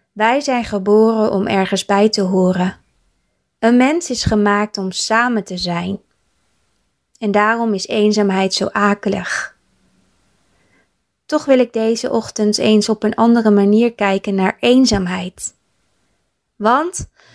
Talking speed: 125 wpm